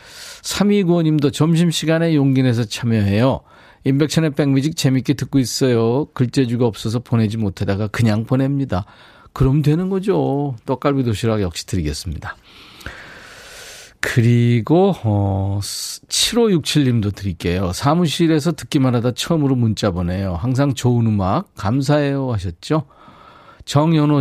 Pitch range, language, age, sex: 110-150 Hz, Korean, 40-59, male